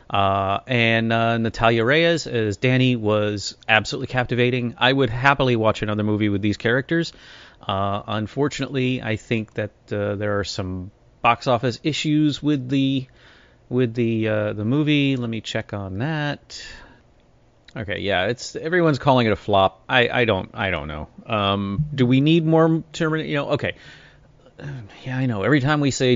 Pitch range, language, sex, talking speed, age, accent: 105-130 Hz, English, male, 165 wpm, 30-49, American